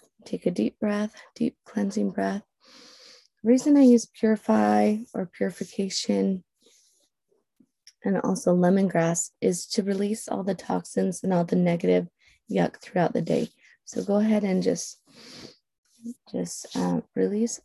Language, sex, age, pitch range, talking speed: English, female, 20-39, 185-230 Hz, 135 wpm